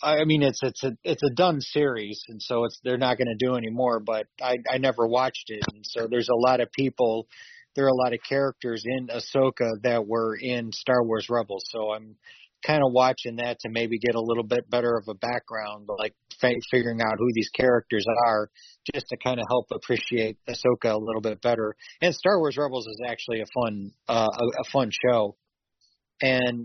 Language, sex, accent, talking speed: English, male, American, 210 wpm